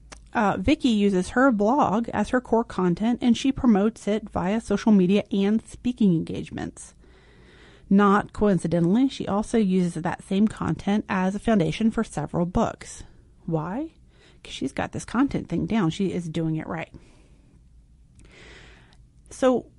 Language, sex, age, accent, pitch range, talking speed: English, female, 30-49, American, 170-225 Hz, 145 wpm